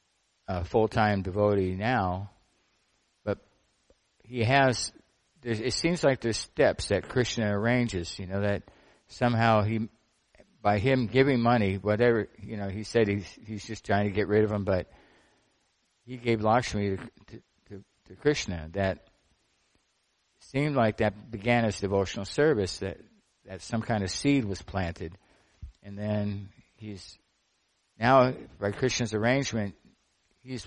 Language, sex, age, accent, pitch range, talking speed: English, male, 60-79, American, 95-120 Hz, 135 wpm